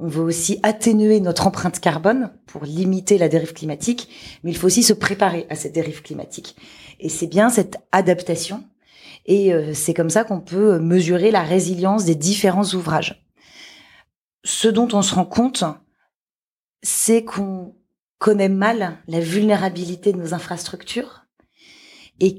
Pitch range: 165-210 Hz